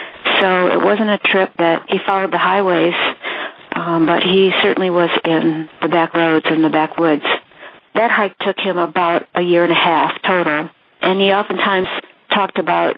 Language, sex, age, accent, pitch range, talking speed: English, female, 50-69, American, 170-190 Hz, 175 wpm